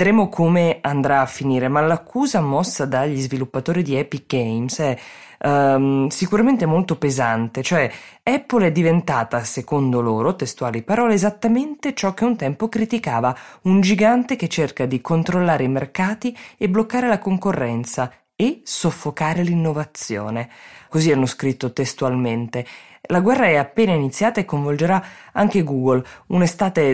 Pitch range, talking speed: 130-175 Hz, 135 wpm